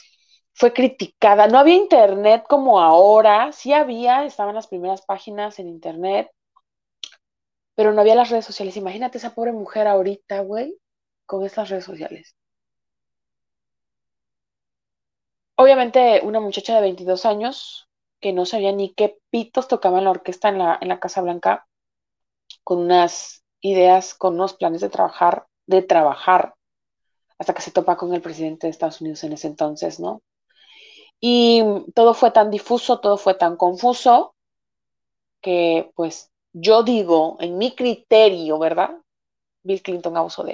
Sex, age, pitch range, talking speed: female, 30-49, 175-220 Hz, 145 wpm